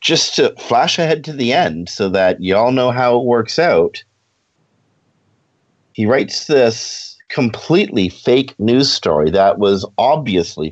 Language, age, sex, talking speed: English, 50-69, male, 140 wpm